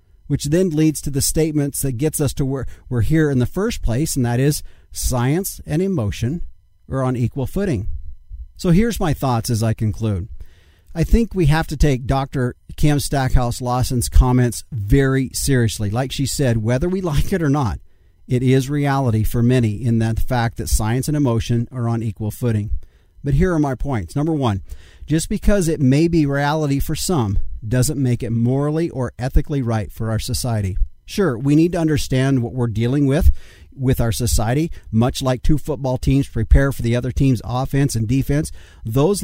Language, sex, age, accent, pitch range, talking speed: English, male, 50-69, American, 115-145 Hz, 190 wpm